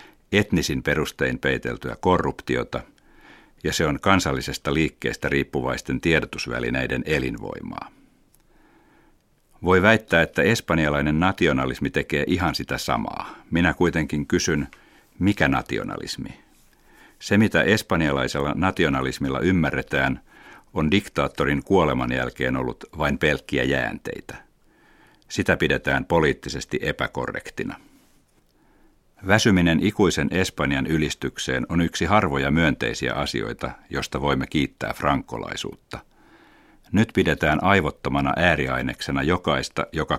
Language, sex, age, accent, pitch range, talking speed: Finnish, male, 60-79, native, 70-90 Hz, 95 wpm